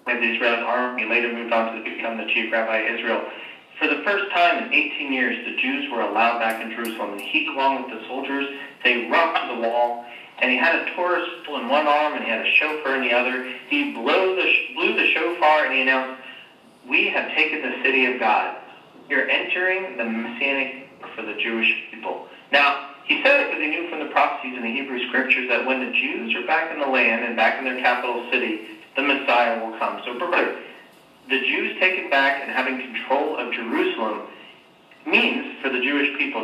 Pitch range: 115-145 Hz